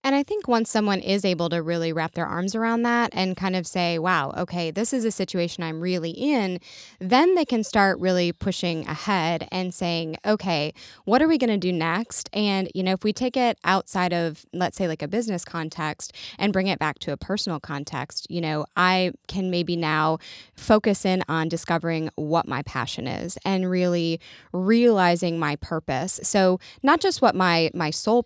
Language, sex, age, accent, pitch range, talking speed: English, female, 20-39, American, 165-215 Hz, 195 wpm